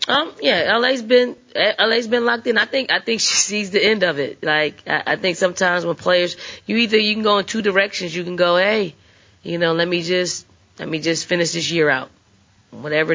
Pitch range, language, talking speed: 160-180 Hz, English, 230 wpm